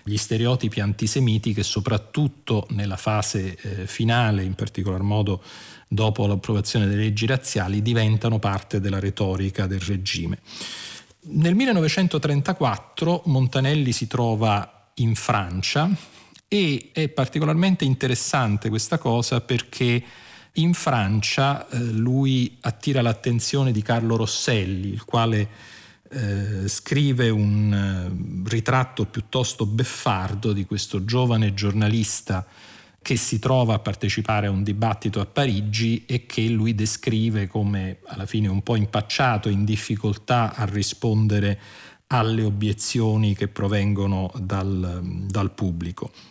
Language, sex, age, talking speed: Italian, male, 40-59, 115 wpm